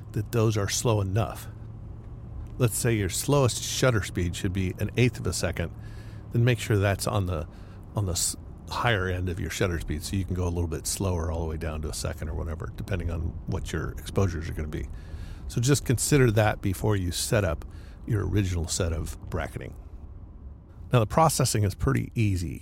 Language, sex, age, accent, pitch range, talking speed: English, male, 50-69, American, 90-115 Hz, 205 wpm